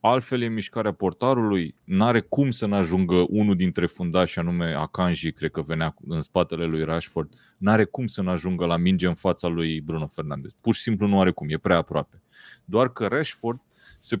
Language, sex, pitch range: Romanian, male, 90-120 Hz